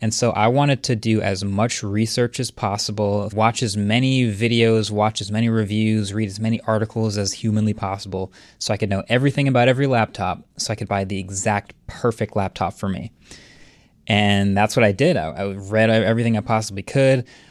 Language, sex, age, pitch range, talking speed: English, male, 20-39, 100-115 Hz, 190 wpm